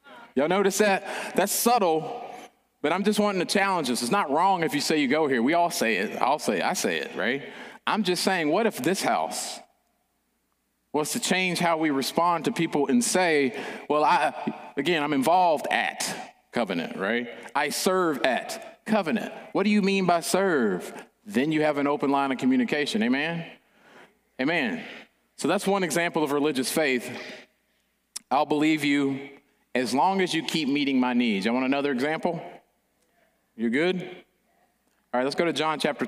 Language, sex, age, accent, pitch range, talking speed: English, male, 30-49, American, 140-210 Hz, 180 wpm